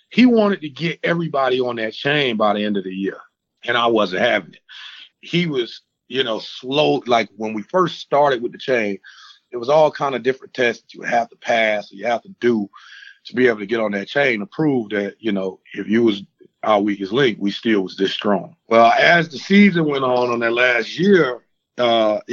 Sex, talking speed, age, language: male, 225 wpm, 30-49, English